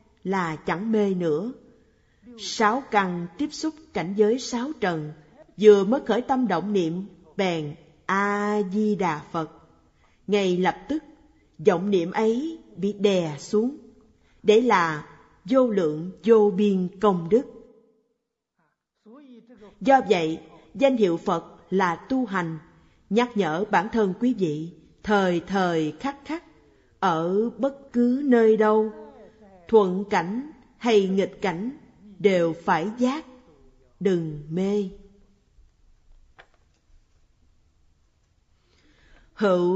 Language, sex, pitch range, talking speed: Vietnamese, female, 165-230 Hz, 110 wpm